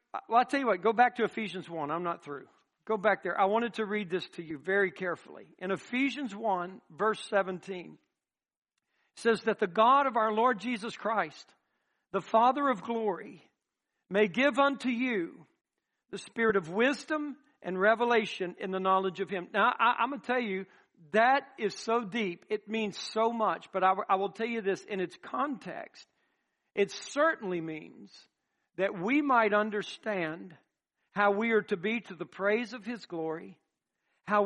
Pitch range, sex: 190-230 Hz, male